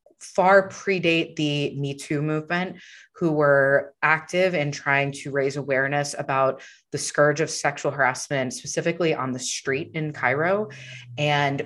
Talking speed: 140 wpm